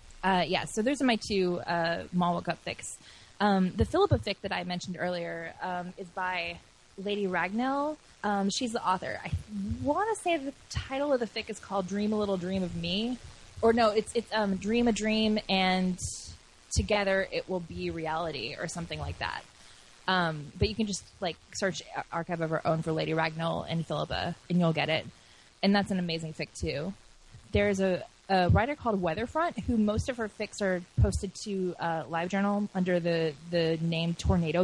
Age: 20-39